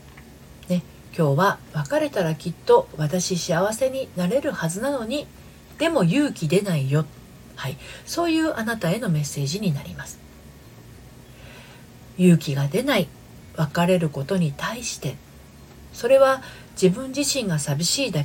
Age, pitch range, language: 40-59, 140-205 Hz, Japanese